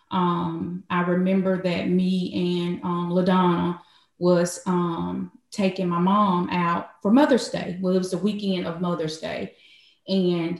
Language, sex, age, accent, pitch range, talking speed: English, female, 20-39, American, 180-210 Hz, 145 wpm